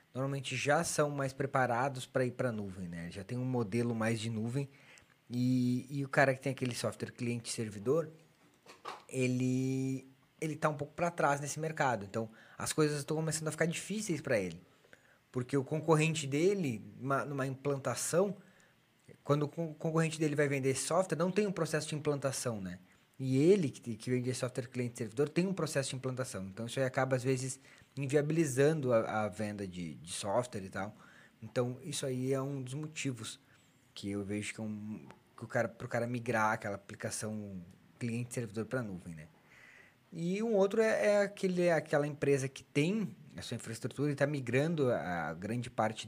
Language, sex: Portuguese, male